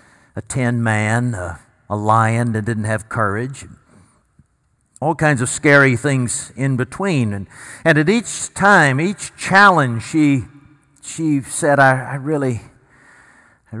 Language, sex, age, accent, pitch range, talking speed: English, male, 60-79, American, 110-140 Hz, 135 wpm